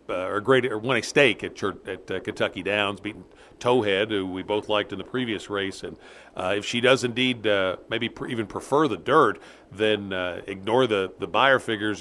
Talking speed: 210 wpm